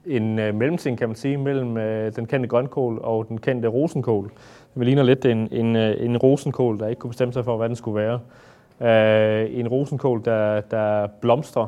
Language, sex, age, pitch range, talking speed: Danish, male, 30-49, 105-125 Hz, 185 wpm